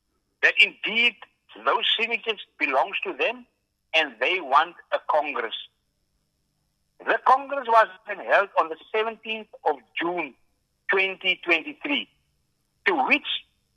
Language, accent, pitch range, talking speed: English, Indian, 135-210 Hz, 110 wpm